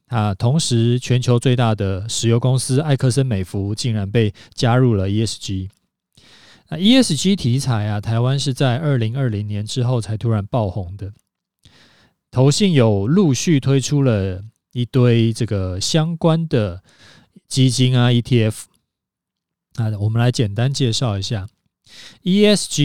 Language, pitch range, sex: Chinese, 105-135 Hz, male